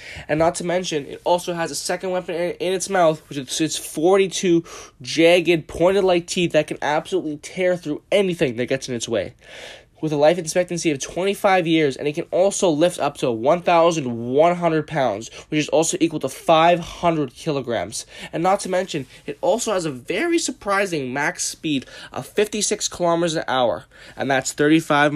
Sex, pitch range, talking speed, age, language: male, 145-175 Hz, 175 wpm, 10-29, English